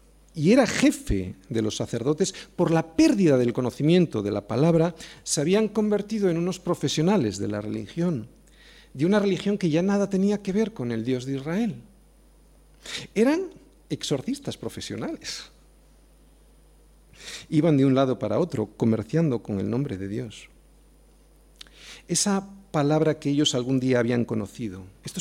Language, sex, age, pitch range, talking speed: Spanish, male, 50-69, 120-190 Hz, 145 wpm